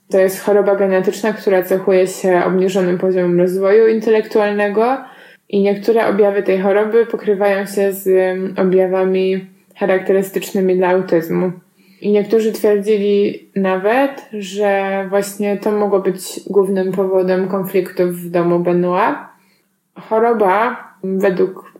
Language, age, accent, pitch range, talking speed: Polish, 20-39, native, 185-200 Hz, 110 wpm